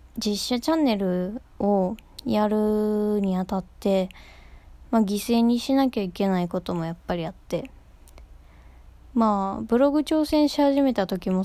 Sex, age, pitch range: female, 20-39, 190-240 Hz